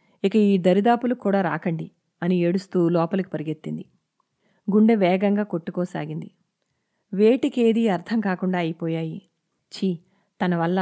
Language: Telugu